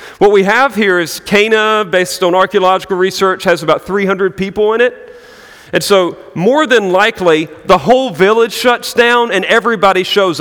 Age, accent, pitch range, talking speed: 40-59, American, 155-215 Hz, 165 wpm